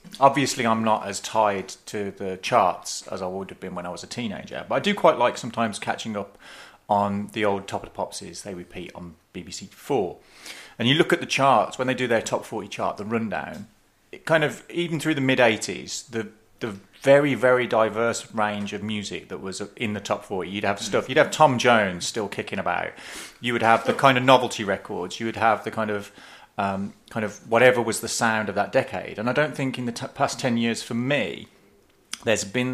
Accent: British